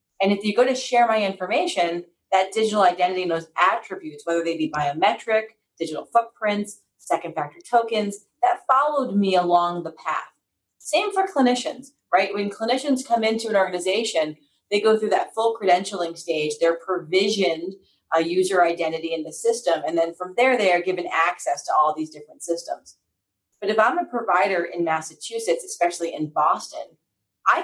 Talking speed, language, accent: 170 wpm, English, American